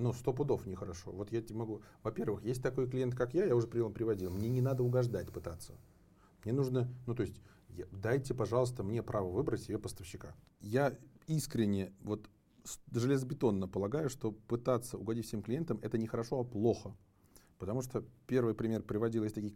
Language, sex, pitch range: Russian, male, 100-125 Hz